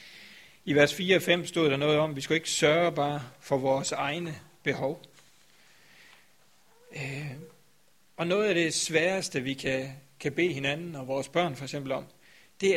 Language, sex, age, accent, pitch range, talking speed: Danish, male, 60-79, native, 140-180 Hz, 175 wpm